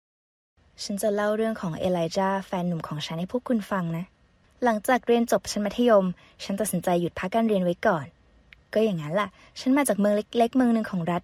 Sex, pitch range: female, 175-230 Hz